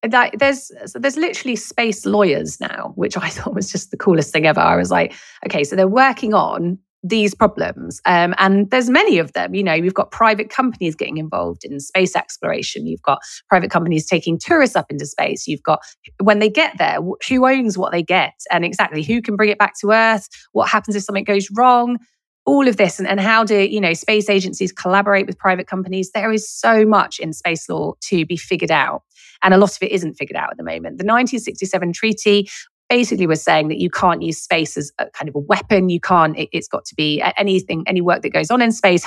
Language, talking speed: English, 225 wpm